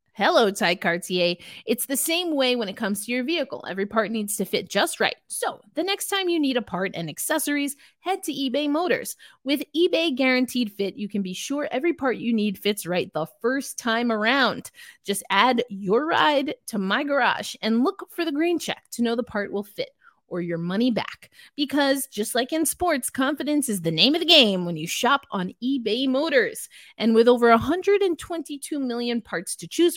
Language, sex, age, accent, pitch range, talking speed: English, female, 30-49, American, 200-290 Hz, 200 wpm